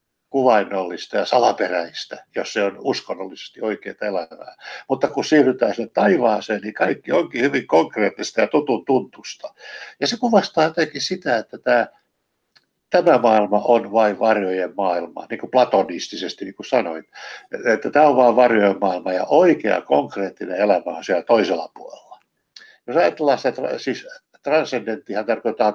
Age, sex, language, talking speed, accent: 60-79, male, Finnish, 130 wpm, native